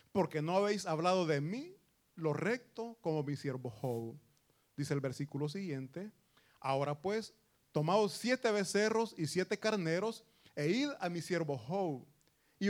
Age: 30-49